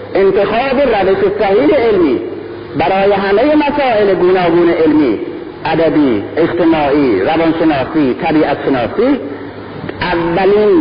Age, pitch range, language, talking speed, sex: 50-69, 250-410 Hz, Persian, 80 wpm, male